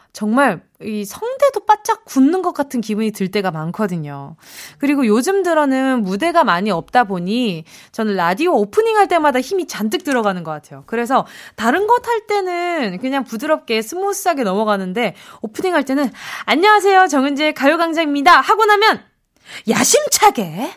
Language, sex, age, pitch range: Korean, female, 20-39, 205-330 Hz